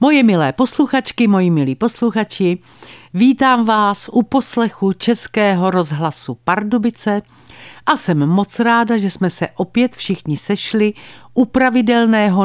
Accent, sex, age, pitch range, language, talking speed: native, female, 50-69, 160-235 Hz, Czech, 120 wpm